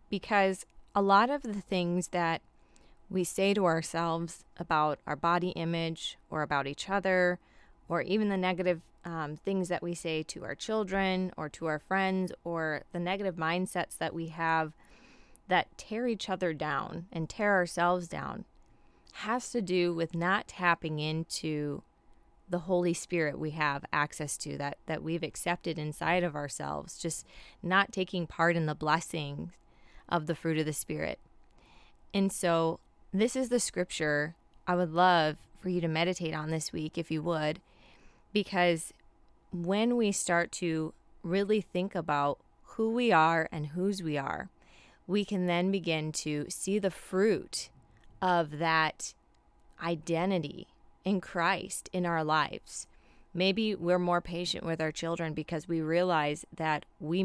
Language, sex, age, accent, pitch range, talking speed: English, female, 20-39, American, 155-185 Hz, 155 wpm